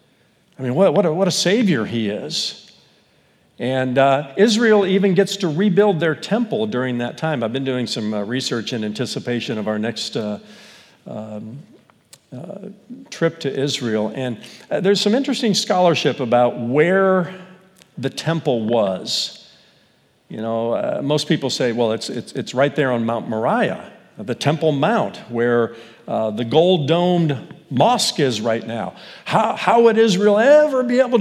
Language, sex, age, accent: English, male, 50-69, American